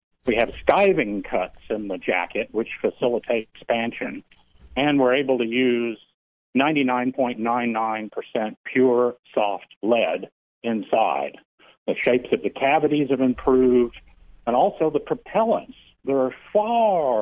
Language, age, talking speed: English, 60-79, 120 wpm